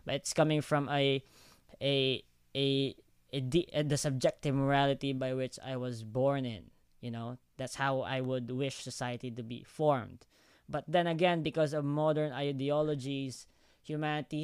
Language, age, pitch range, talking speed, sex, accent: English, 20-39, 125-145 Hz, 150 wpm, female, Filipino